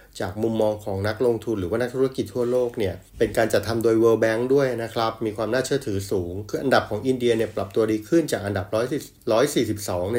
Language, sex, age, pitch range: Thai, male, 30-49, 100-120 Hz